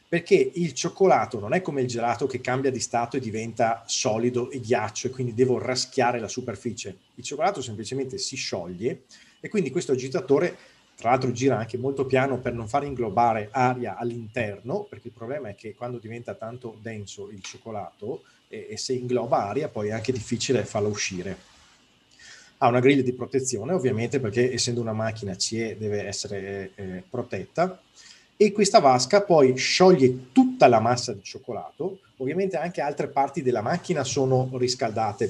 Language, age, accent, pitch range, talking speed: Italian, 30-49, native, 120-140 Hz, 170 wpm